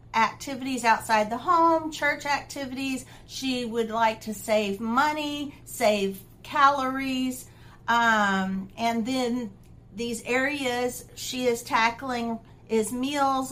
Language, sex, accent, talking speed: English, female, American, 105 wpm